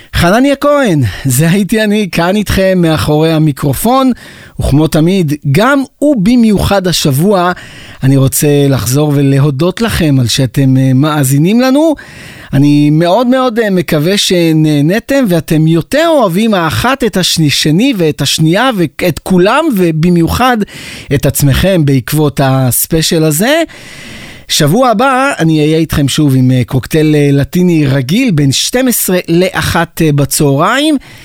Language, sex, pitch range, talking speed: Hebrew, male, 145-215 Hz, 115 wpm